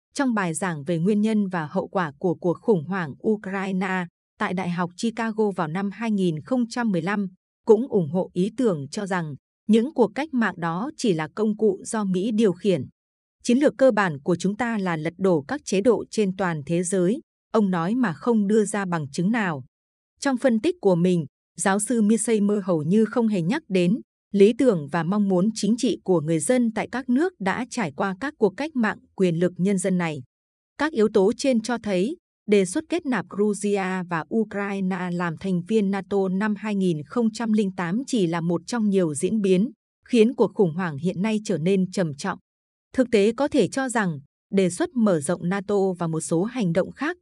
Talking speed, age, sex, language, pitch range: 205 wpm, 20-39, female, Vietnamese, 180-225 Hz